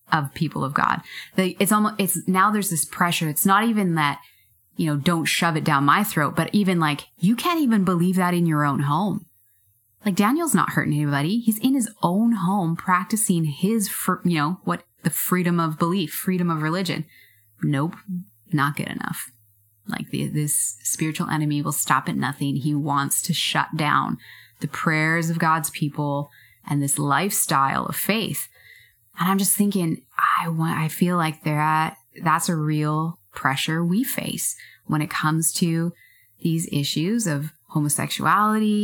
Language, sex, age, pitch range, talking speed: English, female, 20-39, 150-195 Hz, 170 wpm